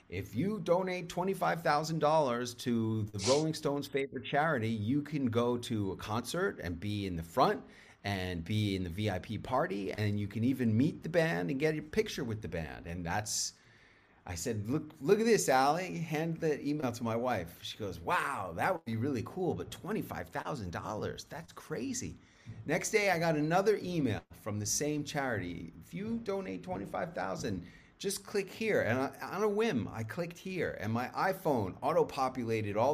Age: 30-49